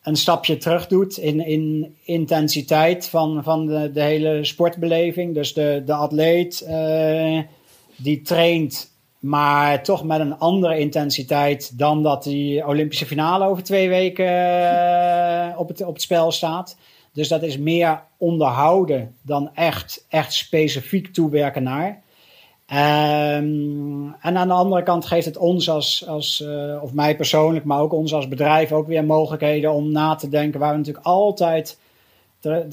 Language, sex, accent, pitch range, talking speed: Dutch, male, Dutch, 150-170 Hz, 150 wpm